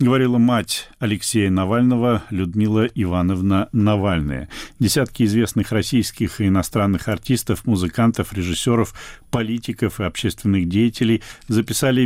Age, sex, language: 40-59, male, Russian